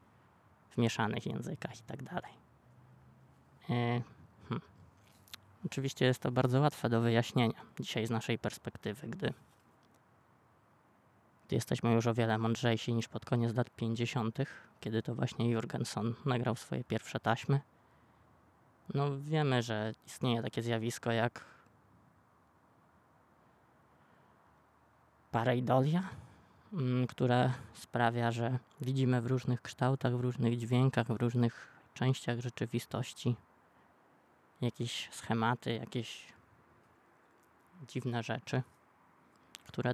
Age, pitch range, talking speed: 20-39, 115-125 Hz, 100 wpm